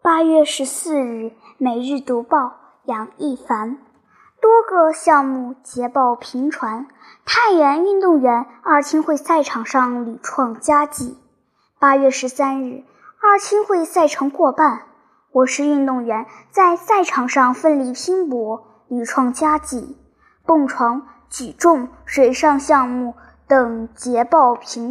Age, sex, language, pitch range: 10-29, male, Chinese, 240-310 Hz